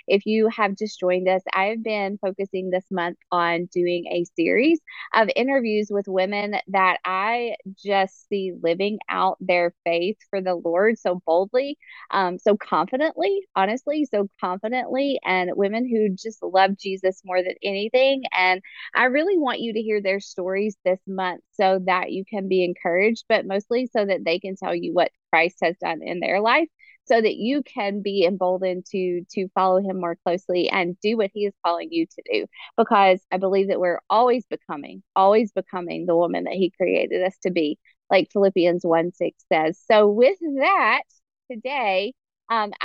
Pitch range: 185-230 Hz